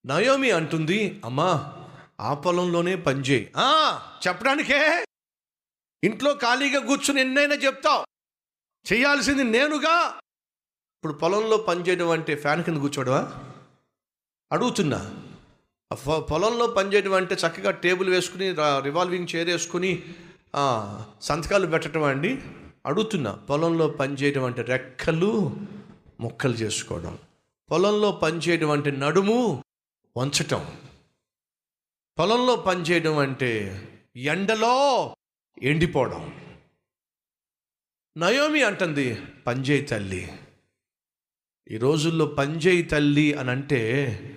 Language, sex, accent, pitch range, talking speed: Telugu, male, native, 145-225 Hz, 80 wpm